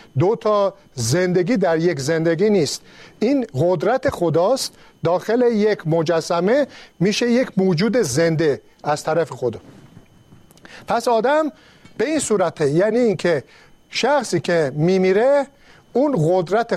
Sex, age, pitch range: male, 50-69, 165-225 Hz